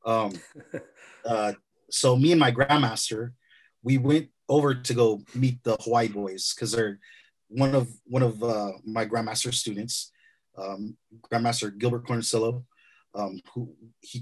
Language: English